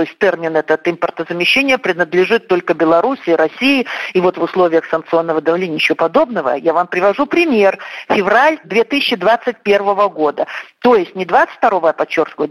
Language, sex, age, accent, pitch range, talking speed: Russian, female, 50-69, native, 185-240 Hz, 145 wpm